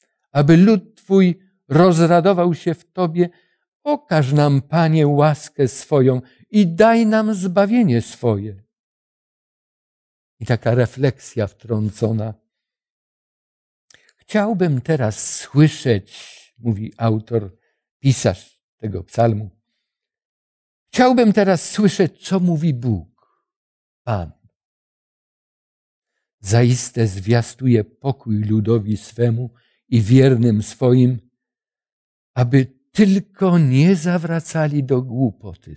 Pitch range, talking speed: 115-180 Hz, 85 wpm